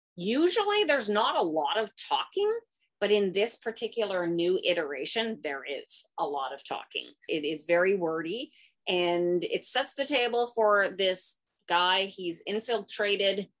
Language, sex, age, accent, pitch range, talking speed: English, female, 30-49, American, 170-240 Hz, 145 wpm